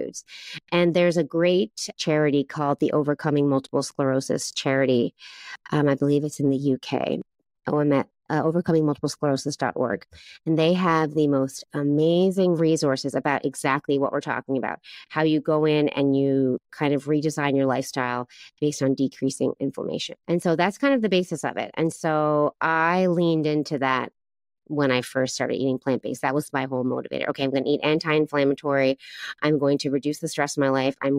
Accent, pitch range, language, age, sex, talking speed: American, 135-155 Hz, English, 30-49, female, 175 wpm